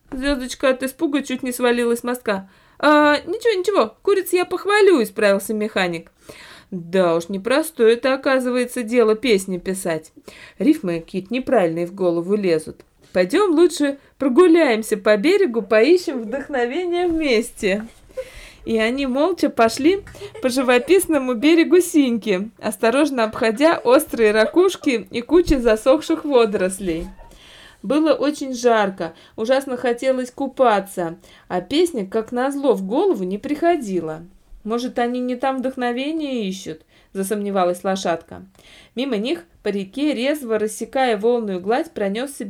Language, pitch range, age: Russian, 205-285 Hz, 20-39